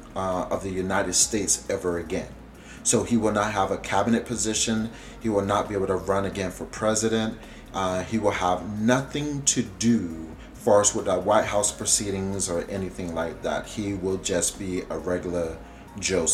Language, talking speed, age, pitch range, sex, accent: English, 180 wpm, 30-49, 95-115 Hz, male, American